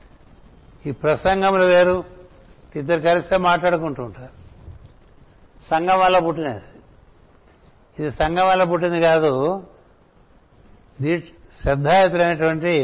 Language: Telugu